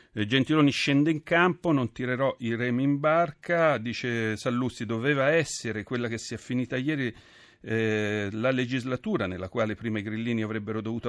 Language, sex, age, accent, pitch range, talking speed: Italian, male, 40-59, native, 95-130 Hz, 160 wpm